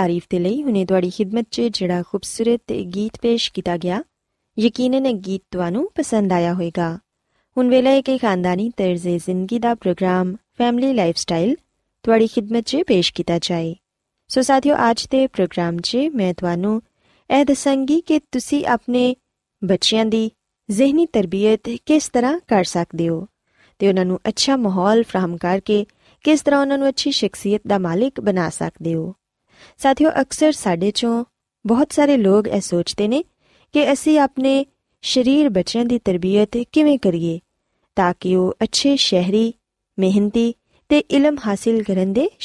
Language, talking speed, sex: Punjabi, 130 wpm, female